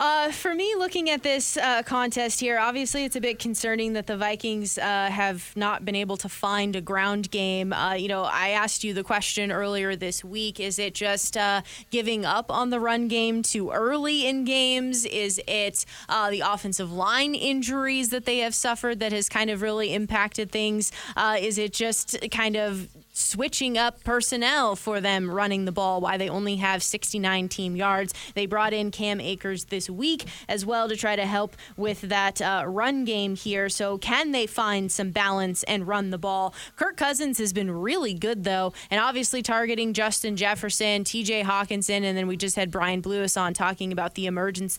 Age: 20-39